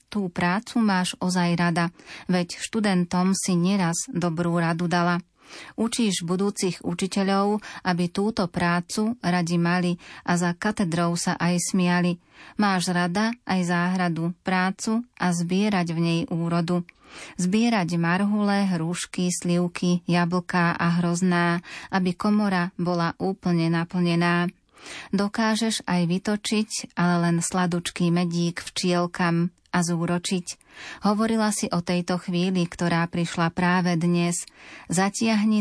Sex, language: female, Slovak